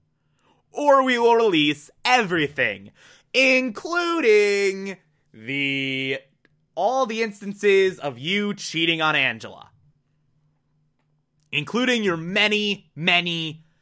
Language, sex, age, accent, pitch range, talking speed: English, male, 20-39, American, 140-175 Hz, 85 wpm